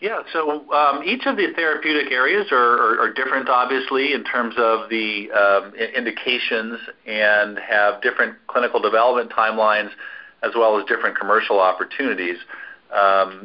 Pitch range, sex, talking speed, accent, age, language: 100-115 Hz, male, 145 wpm, American, 50-69, English